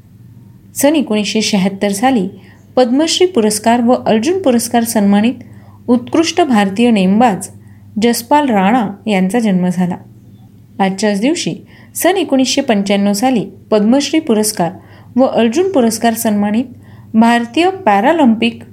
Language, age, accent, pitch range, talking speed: Marathi, 30-49, native, 195-255 Hz, 100 wpm